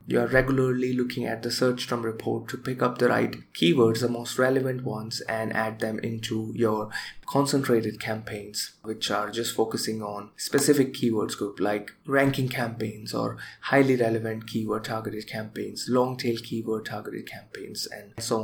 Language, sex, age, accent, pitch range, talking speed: English, male, 20-39, Indian, 115-135 Hz, 165 wpm